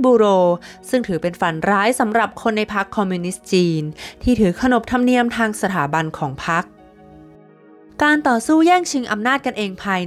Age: 20-39